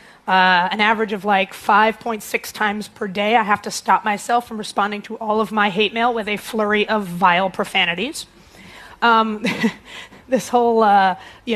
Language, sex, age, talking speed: English, female, 30-49, 170 wpm